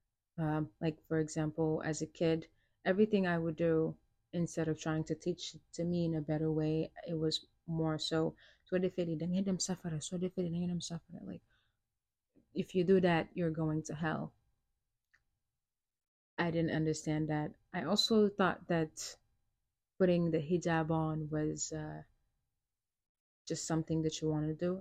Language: English